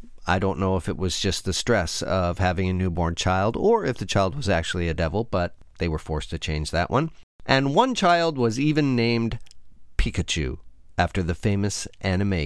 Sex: male